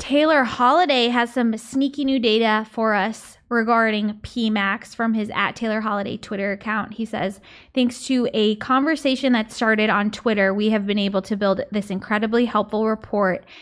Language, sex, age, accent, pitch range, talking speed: English, female, 20-39, American, 205-240 Hz, 165 wpm